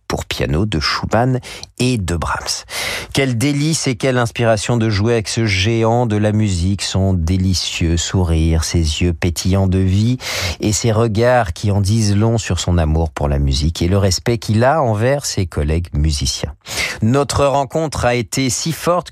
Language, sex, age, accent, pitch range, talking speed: French, male, 50-69, French, 90-120 Hz, 175 wpm